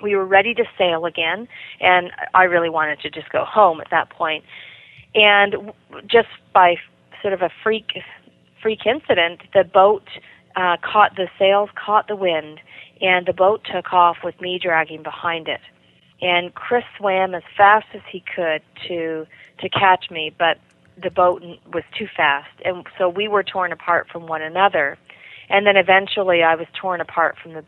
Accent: American